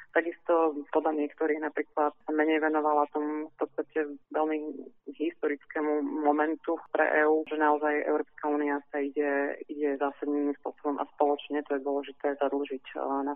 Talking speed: 130 wpm